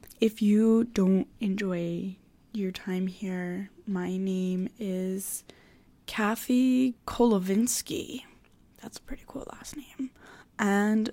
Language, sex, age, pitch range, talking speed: English, female, 10-29, 195-230 Hz, 100 wpm